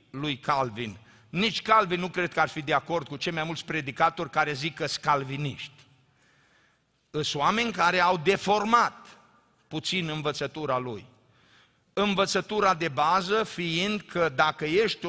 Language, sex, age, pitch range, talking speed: Romanian, male, 50-69, 155-215 Hz, 140 wpm